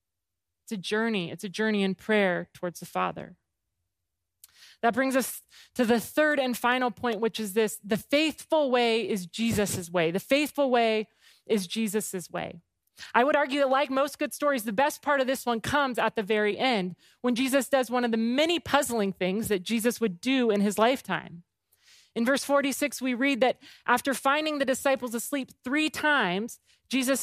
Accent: American